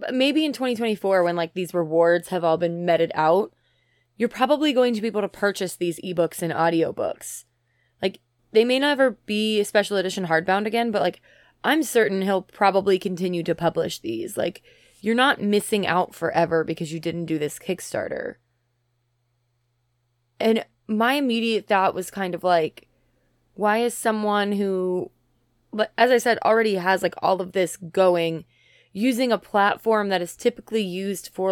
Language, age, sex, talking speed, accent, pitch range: English, 20-39, female, 165 wpm, American, 170-215 Hz